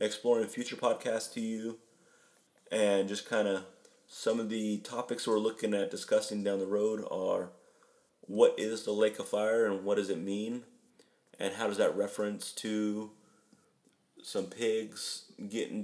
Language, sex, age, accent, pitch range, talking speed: English, male, 30-49, American, 100-130 Hz, 160 wpm